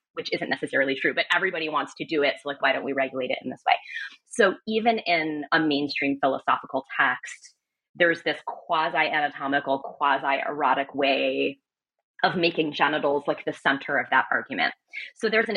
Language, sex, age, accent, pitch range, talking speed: English, female, 20-39, American, 145-195 Hz, 170 wpm